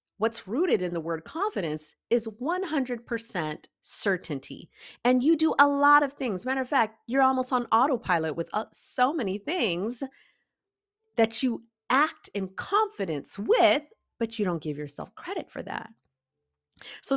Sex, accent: female, American